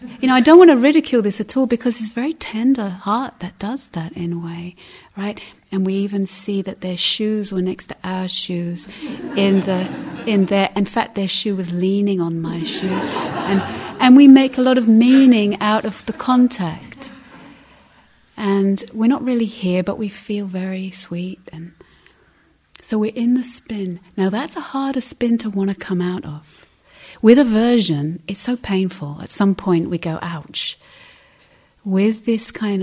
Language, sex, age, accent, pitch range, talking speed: English, female, 30-49, British, 170-225 Hz, 185 wpm